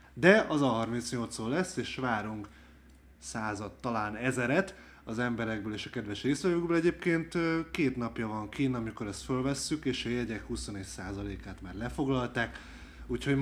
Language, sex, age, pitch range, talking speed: Hungarian, male, 20-39, 105-130 Hz, 145 wpm